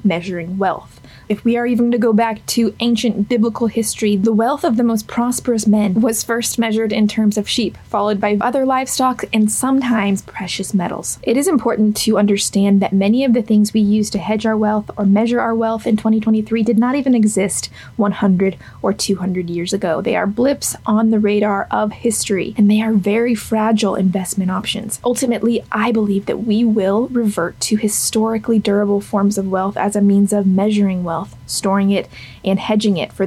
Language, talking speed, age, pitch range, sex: English, 190 wpm, 20-39, 200-230 Hz, female